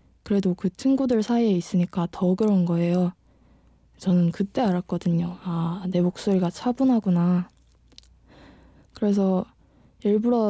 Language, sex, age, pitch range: Korean, female, 20-39, 180-230 Hz